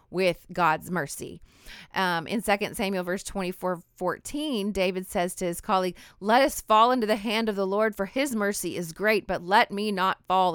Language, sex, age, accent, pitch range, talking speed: English, female, 30-49, American, 165-200 Hz, 195 wpm